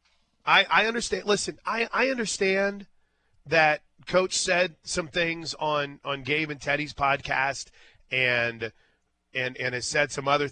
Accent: American